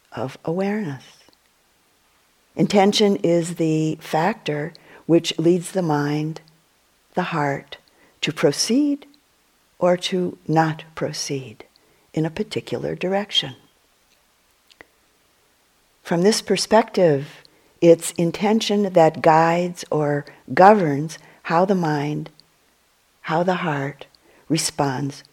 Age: 50-69